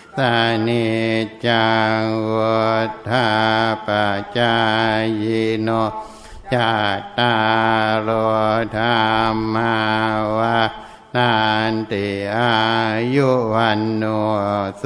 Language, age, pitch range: Thai, 60-79, 110-115 Hz